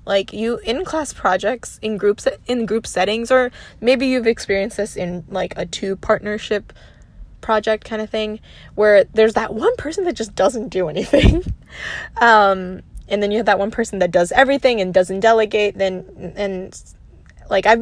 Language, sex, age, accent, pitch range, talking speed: English, female, 10-29, American, 180-225 Hz, 180 wpm